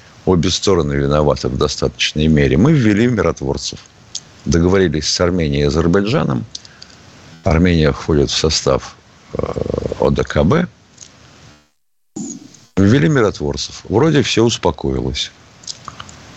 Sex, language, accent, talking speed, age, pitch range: male, Russian, native, 90 wpm, 50-69, 75-115 Hz